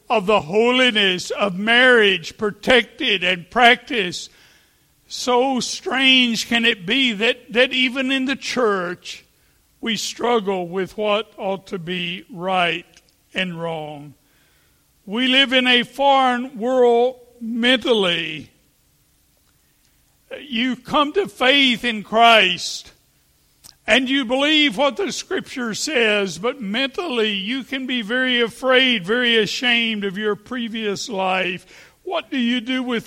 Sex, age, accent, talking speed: male, 60-79, American, 120 wpm